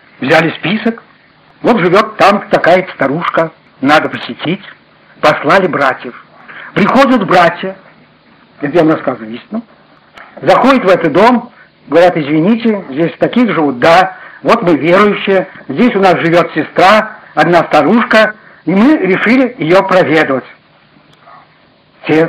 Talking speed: 115 wpm